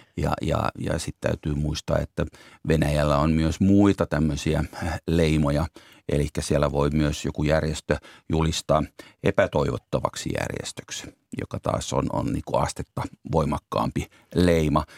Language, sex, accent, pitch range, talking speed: Finnish, male, native, 75-85 Hz, 110 wpm